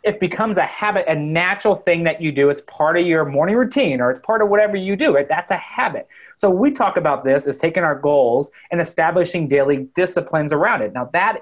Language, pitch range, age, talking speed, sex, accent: English, 135-175 Hz, 30-49, 225 wpm, male, American